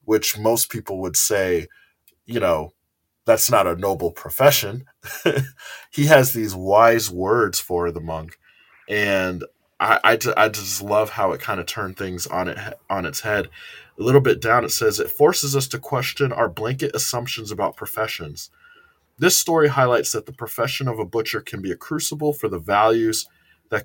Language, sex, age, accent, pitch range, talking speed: English, male, 20-39, American, 95-135 Hz, 175 wpm